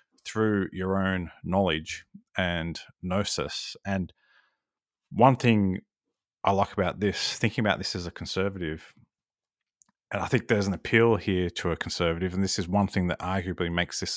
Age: 30-49